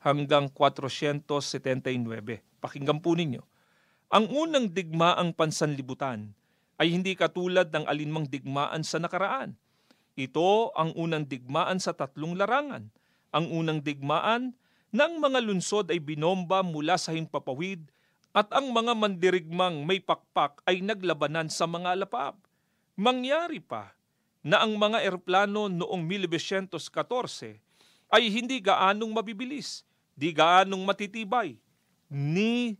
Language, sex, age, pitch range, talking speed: Filipino, male, 40-59, 160-210 Hz, 115 wpm